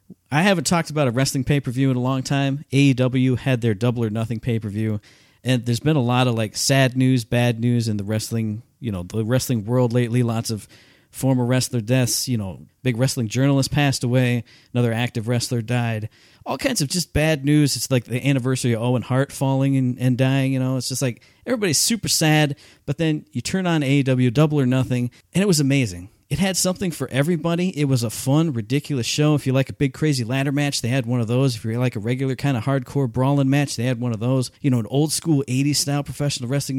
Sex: male